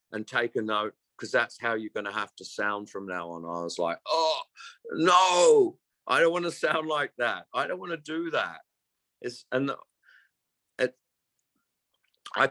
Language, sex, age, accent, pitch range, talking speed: English, male, 50-69, British, 110-135 Hz, 170 wpm